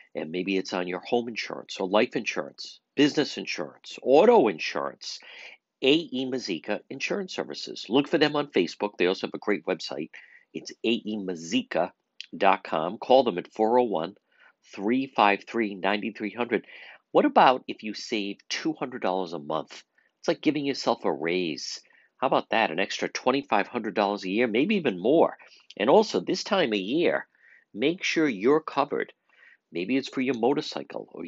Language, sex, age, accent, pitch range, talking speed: English, male, 50-69, American, 100-145 Hz, 150 wpm